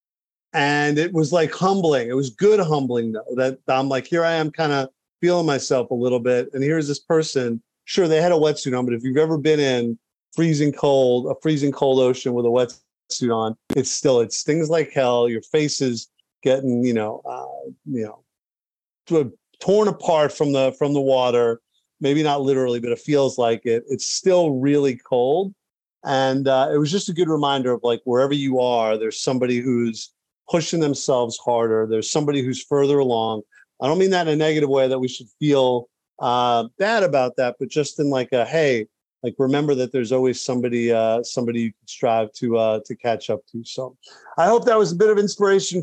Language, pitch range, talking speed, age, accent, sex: English, 125-160 Hz, 205 wpm, 40-59, American, male